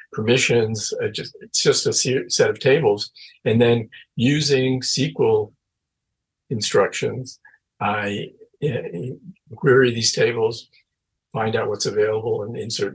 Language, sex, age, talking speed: English, male, 50-69, 100 wpm